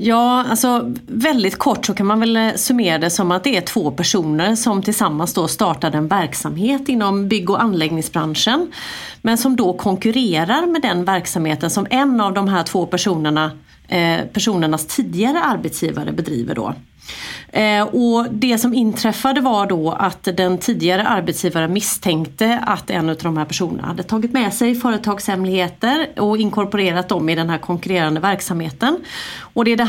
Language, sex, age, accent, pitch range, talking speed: Swedish, female, 30-49, native, 175-220 Hz, 155 wpm